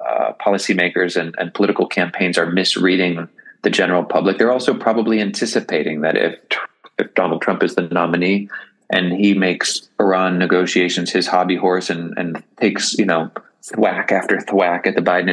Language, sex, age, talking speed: English, male, 30-49, 165 wpm